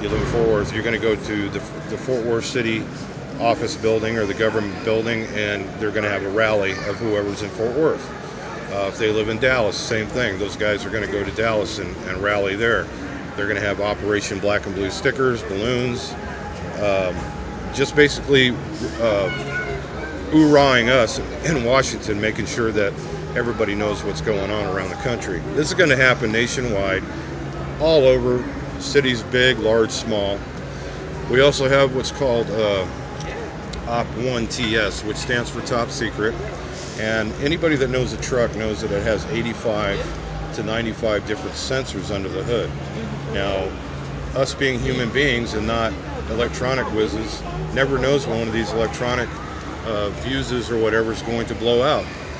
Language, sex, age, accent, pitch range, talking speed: English, male, 50-69, American, 100-130 Hz, 170 wpm